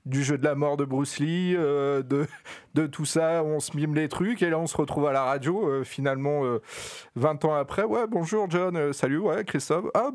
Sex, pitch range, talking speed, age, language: male, 130-160 Hz, 235 wpm, 40-59, French